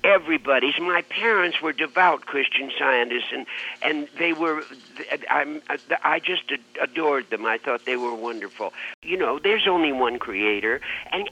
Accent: American